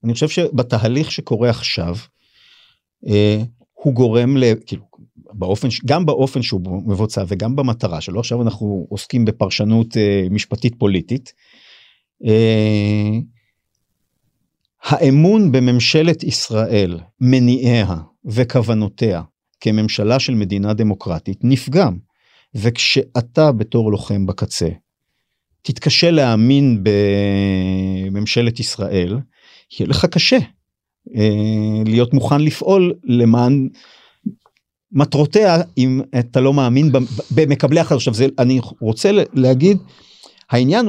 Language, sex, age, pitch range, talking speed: Hebrew, male, 50-69, 105-135 Hz, 90 wpm